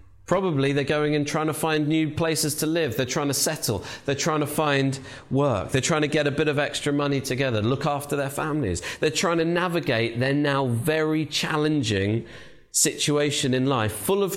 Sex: male